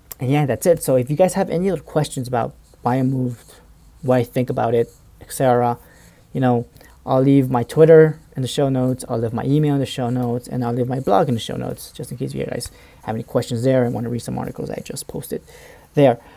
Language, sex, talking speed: English, male, 250 wpm